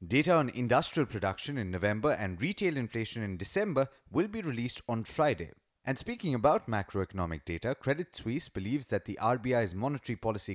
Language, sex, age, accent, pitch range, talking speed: English, male, 30-49, Indian, 100-140 Hz, 165 wpm